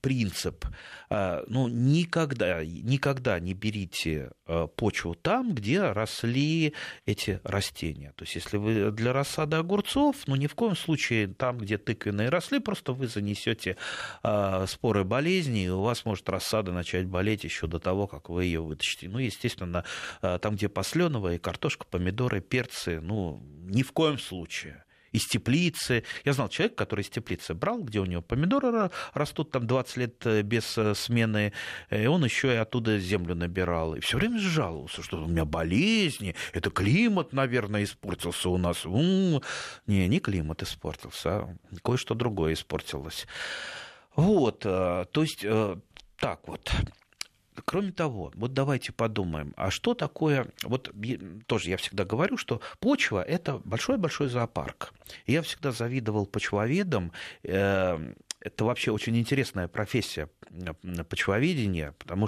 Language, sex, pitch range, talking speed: Russian, male, 90-135 Hz, 140 wpm